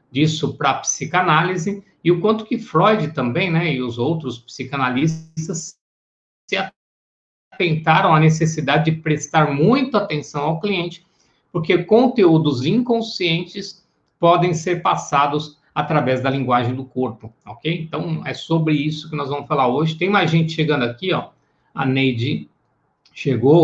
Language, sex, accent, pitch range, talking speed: Portuguese, male, Brazilian, 125-160 Hz, 140 wpm